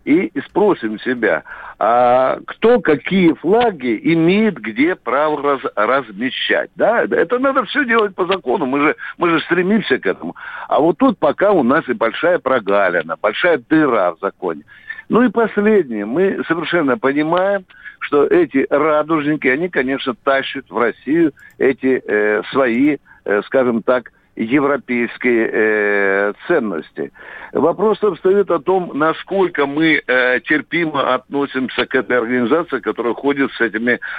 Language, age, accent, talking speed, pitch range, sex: Russian, 60-79, native, 135 wpm, 130-200 Hz, male